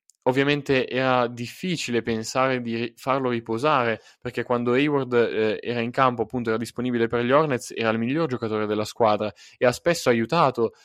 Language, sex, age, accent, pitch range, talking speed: Italian, male, 10-29, native, 115-130 Hz, 160 wpm